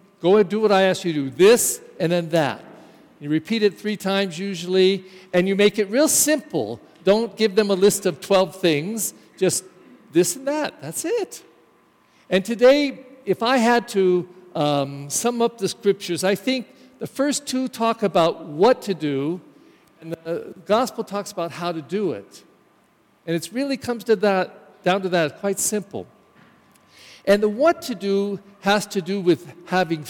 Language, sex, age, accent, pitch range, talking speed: English, male, 50-69, American, 170-220 Hz, 180 wpm